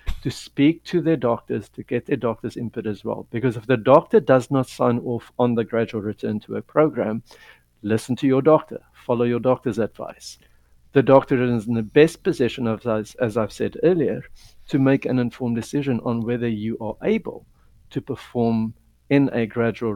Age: 60-79